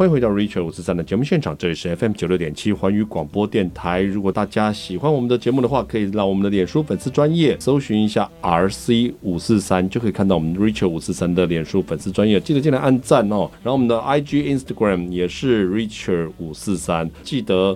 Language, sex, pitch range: Chinese, male, 90-115 Hz